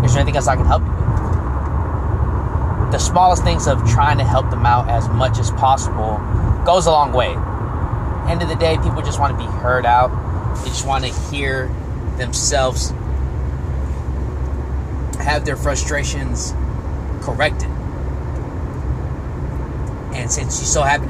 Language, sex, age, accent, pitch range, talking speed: English, male, 20-39, American, 70-110 Hz, 150 wpm